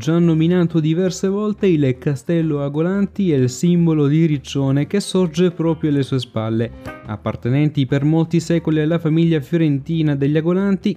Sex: male